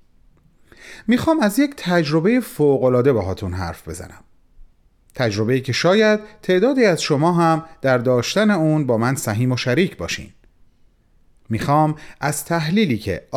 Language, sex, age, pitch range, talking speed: Persian, male, 40-59, 110-170 Hz, 130 wpm